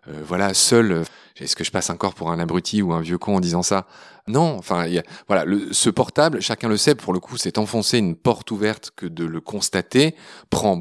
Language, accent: French, French